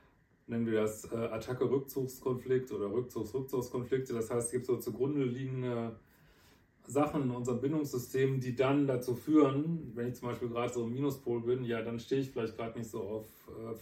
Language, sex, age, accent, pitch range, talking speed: German, male, 30-49, German, 120-135 Hz, 180 wpm